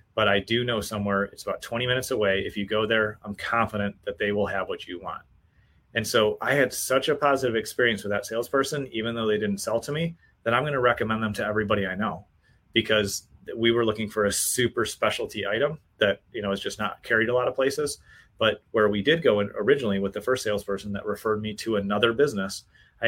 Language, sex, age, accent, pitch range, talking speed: English, male, 30-49, American, 100-125 Hz, 230 wpm